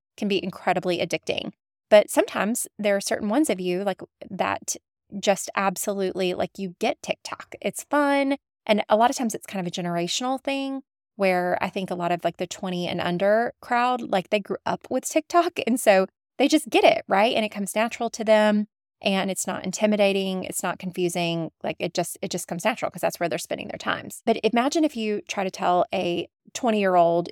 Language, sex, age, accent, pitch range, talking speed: English, female, 20-39, American, 185-235 Hz, 205 wpm